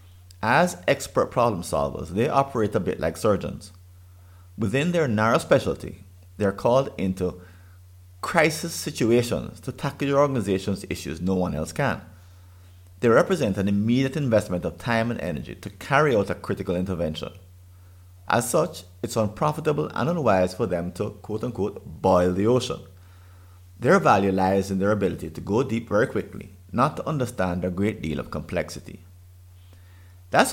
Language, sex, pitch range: English, male, 90-115 Hz